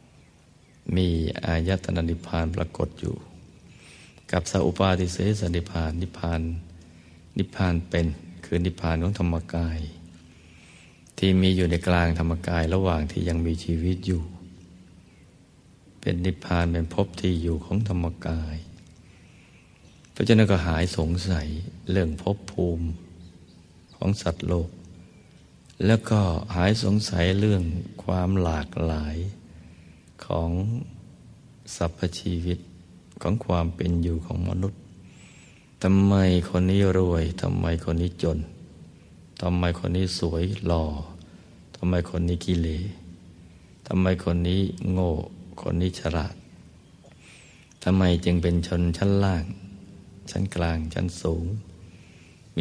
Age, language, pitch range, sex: 60-79, Thai, 85-95 Hz, male